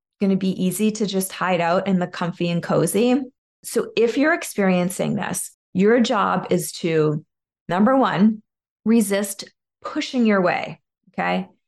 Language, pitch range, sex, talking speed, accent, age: English, 185-225 Hz, female, 150 wpm, American, 20-39